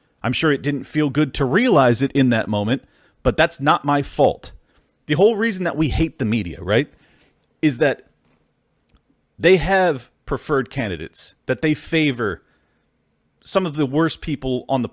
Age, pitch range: 30-49, 115-145 Hz